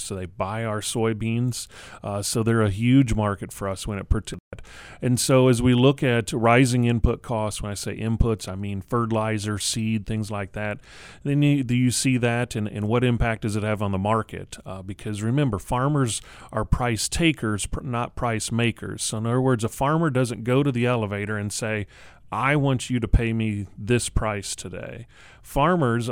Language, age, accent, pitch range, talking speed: English, 30-49, American, 110-130 Hz, 190 wpm